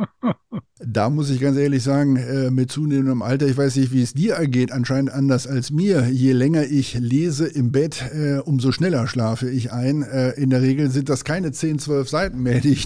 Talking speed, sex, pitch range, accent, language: 215 wpm, male, 130-150 Hz, German, German